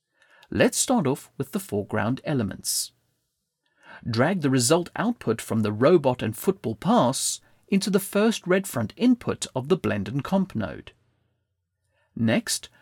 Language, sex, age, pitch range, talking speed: English, male, 30-49, 115-190 Hz, 140 wpm